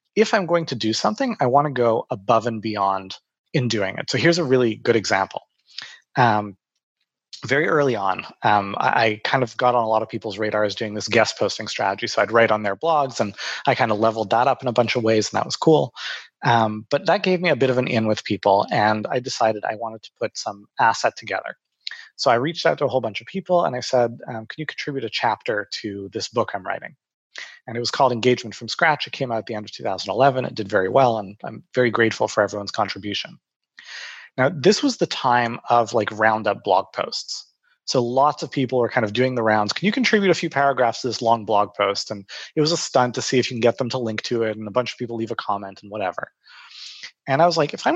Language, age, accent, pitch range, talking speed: English, 30-49, American, 110-140 Hz, 250 wpm